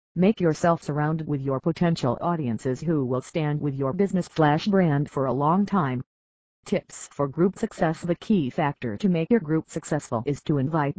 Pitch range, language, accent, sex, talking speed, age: 140-180 Hz, English, American, female, 185 wpm, 40-59